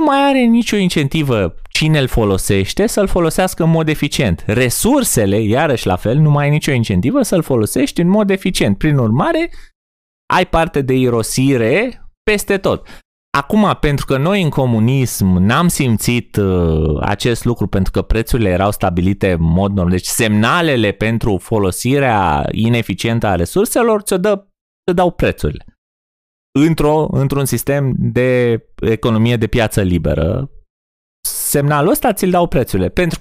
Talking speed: 145 wpm